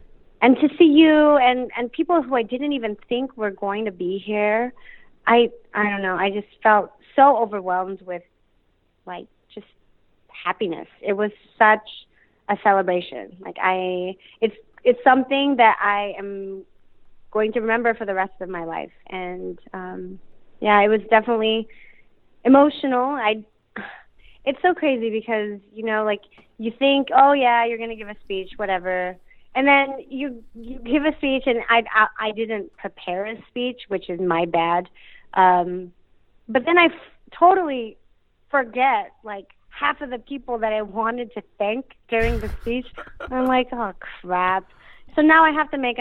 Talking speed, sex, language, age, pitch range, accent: 165 wpm, female, English, 30-49, 195-255 Hz, American